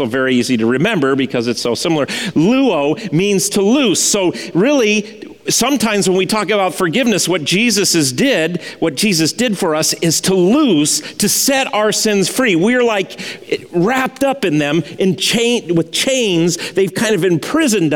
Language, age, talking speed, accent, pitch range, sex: English, 40-59, 175 wpm, American, 160-220 Hz, male